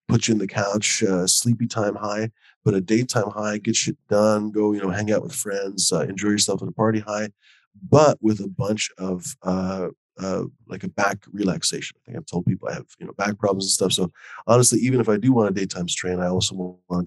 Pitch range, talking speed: 95-115 Hz, 235 wpm